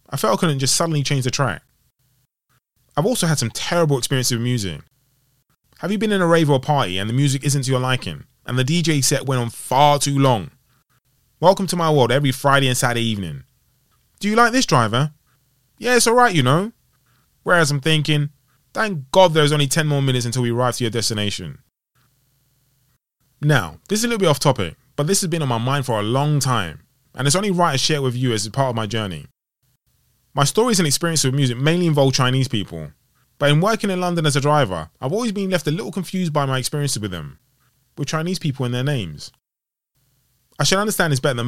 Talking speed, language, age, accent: 220 wpm, English, 20-39, British